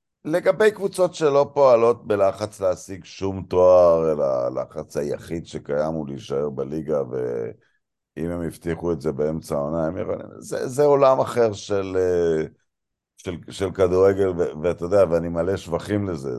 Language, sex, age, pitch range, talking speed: Hebrew, male, 50-69, 80-115 Hz, 145 wpm